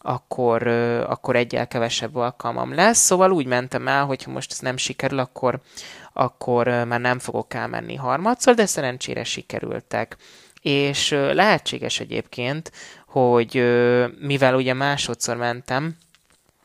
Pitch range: 115-145 Hz